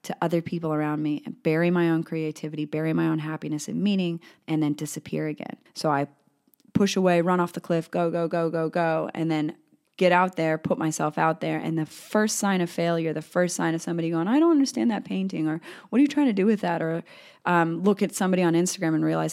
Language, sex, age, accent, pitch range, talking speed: English, female, 30-49, American, 160-190 Hz, 240 wpm